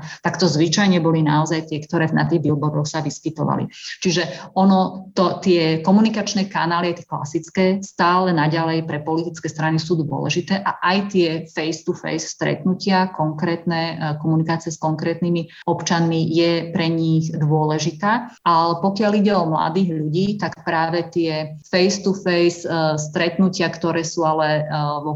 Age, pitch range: 30-49, 155-175 Hz